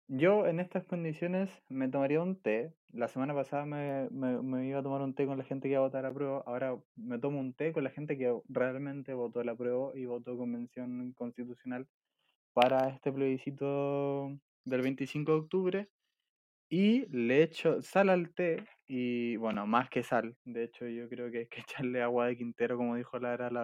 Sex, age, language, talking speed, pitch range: male, 20-39, Spanish, 200 wpm, 125-140 Hz